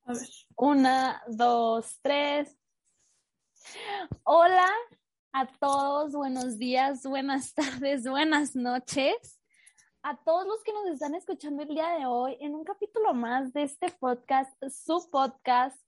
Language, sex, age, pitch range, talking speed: Spanish, female, 20-39, 245-305 Hz, 130 wpm